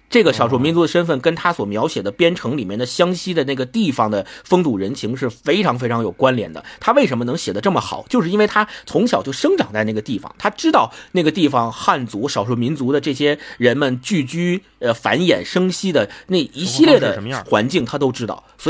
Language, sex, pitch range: Chinese, male, 125-175 Hz